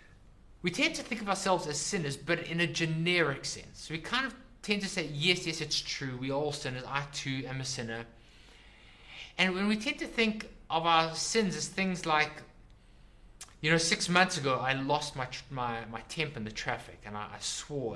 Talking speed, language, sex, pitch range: 210 wpm, English, male, 105-150 Hz